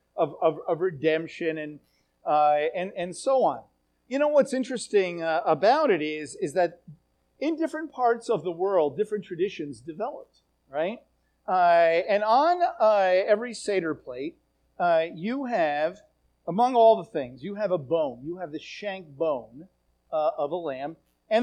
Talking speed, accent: 160 wpm, American